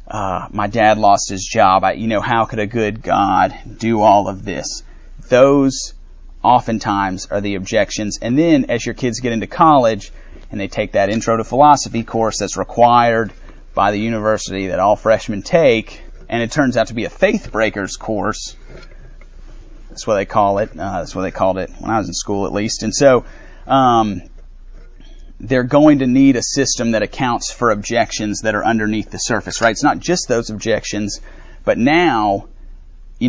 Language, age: English, 30-49